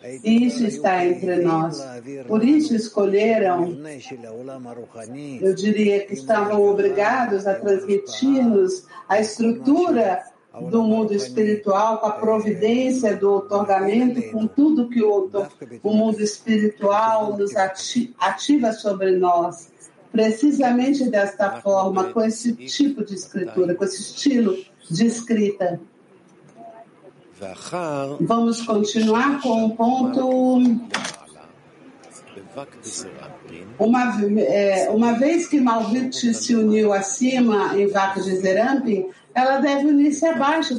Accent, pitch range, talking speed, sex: Brazilian, 190-235 Hz, 100 wpm, female